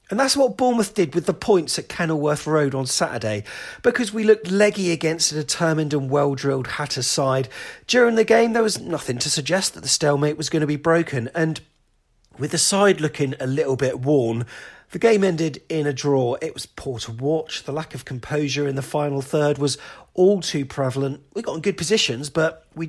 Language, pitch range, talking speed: English, 125-170 Hz, 205 wpm